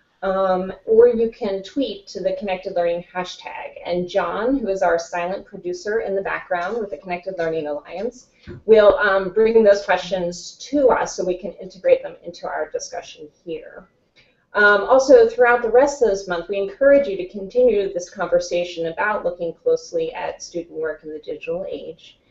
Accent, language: American, English